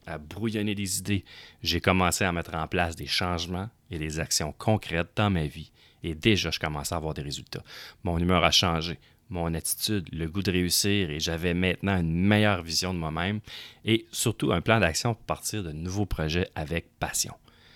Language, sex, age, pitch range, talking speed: French, male, 30-49, 80-100 Hz, 195 wpm